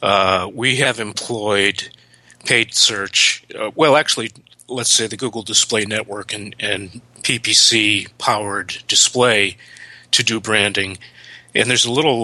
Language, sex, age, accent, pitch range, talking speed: English, male, 30-49, American, 95-115 Hz, 150 wpm